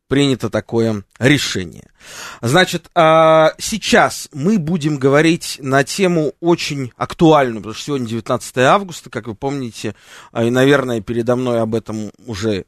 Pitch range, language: 110-150 Hz, Russian